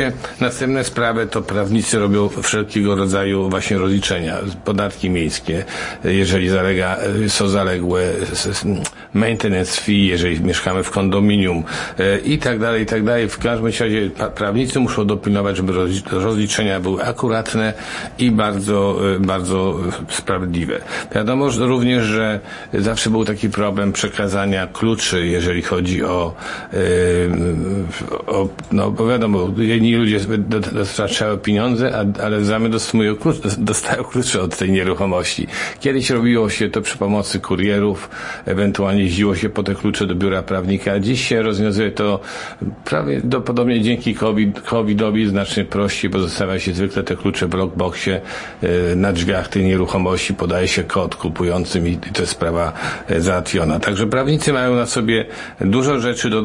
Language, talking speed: Polish, 135 wpm